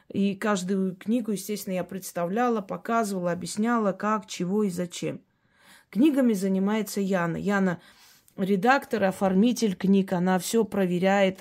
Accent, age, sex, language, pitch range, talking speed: native, 20-39, female, Russian, 180-215 Hz, 115 wpm